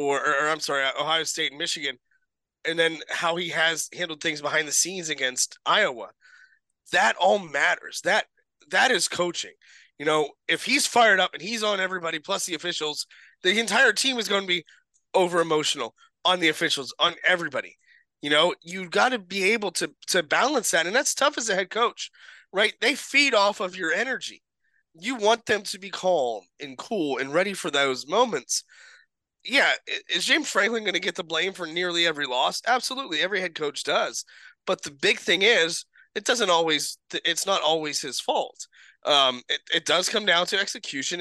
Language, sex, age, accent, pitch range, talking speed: English, male, 20-39, American, 160-215 Hz, 190 wpm